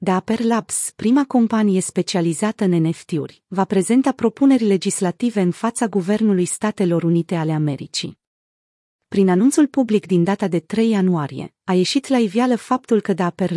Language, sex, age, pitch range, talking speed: Romanian, female, 40-59, 175-220 Hz, 145 wpm